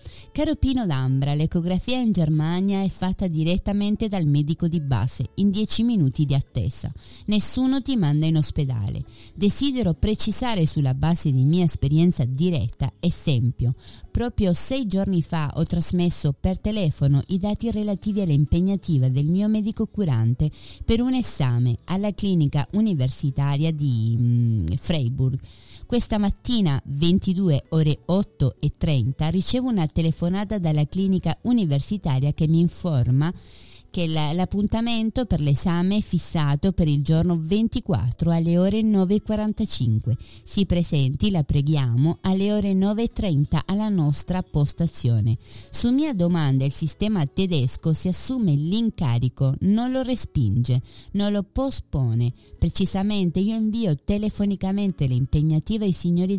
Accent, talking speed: native, 125 wpm